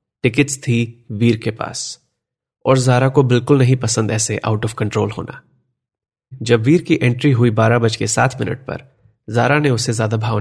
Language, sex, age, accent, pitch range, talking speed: Hindi, male, 30-49, native, 110-130 Hz, 180 wpm